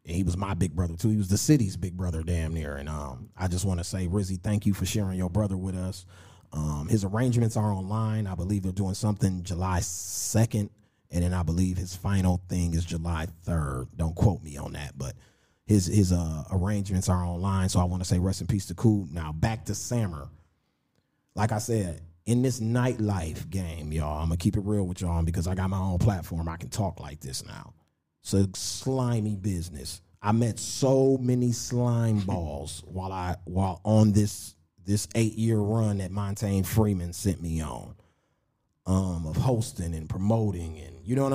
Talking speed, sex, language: 205 wpm, male, English